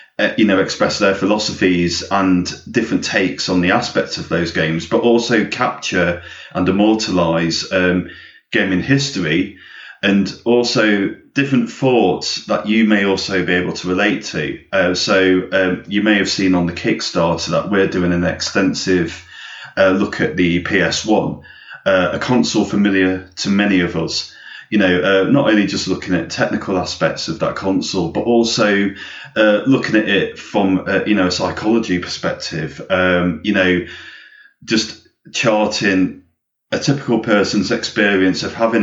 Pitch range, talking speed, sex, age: 90-105 Hz, 155 wpm, male, 30-49